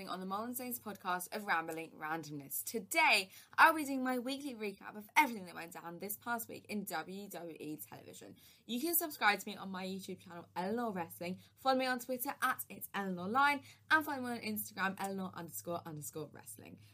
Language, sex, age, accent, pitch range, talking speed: English, female, 10-29, British, 180-255 Hz, 190 wpm